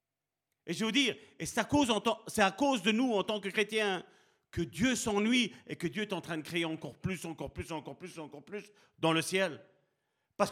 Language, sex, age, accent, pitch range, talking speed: French, male, 40-59, French, 180-270 Hz, 235 wpm